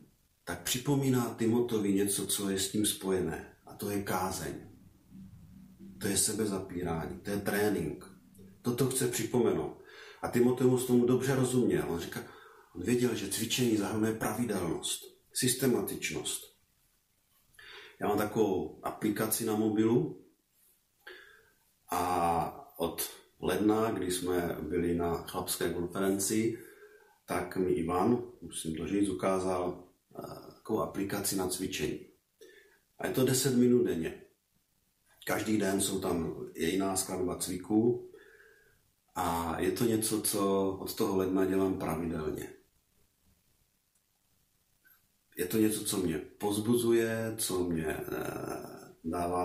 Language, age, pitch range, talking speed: Czech, 40-59, 95-120 Hz, 115 wpm